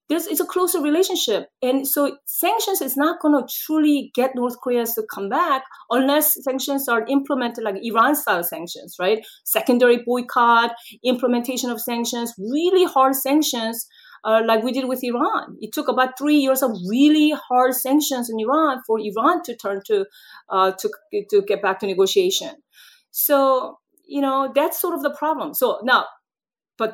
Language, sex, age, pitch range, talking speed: English, female, 30-49, 225-305 Hz, 165 wpm